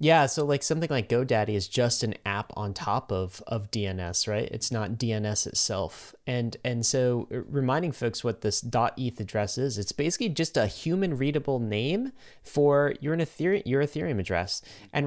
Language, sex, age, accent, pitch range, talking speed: English, male, 30-49, American, 105-140 Hz, 170 wpm